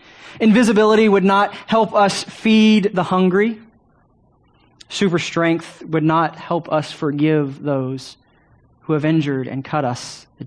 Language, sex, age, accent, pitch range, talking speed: English, male, 20-39, American, 135-180 Hz, 130 wpm